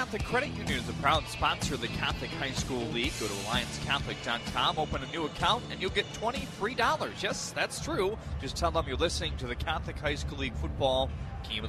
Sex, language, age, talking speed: male, English, 30-49, 210 wpm